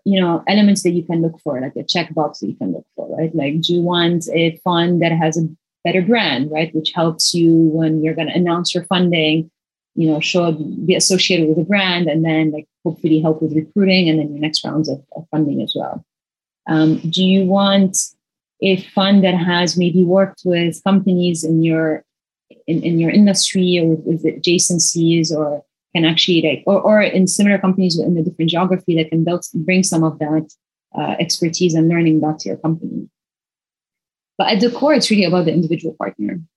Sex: female